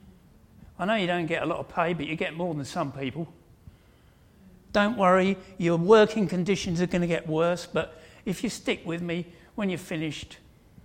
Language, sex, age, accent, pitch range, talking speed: English, male, 60-79, British, 140-205 Hz, 195 wpm